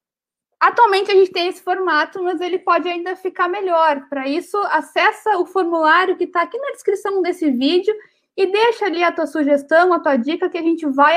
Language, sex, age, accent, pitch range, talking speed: Portuguese, female, 20-39, Brazilian, 290-385 Hz, 200 wpm